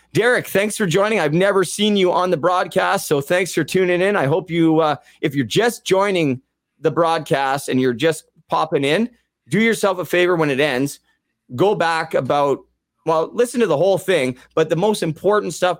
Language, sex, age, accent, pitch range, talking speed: English, male, 30-49, American, 135-170 Hz, 200 wpm